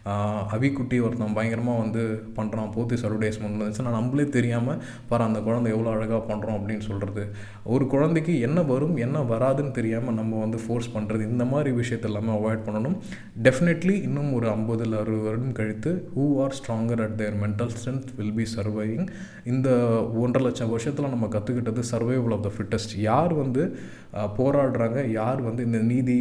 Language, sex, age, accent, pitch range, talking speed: Tamil, male, 20-39, native, 110-130 Hz, 155 wpm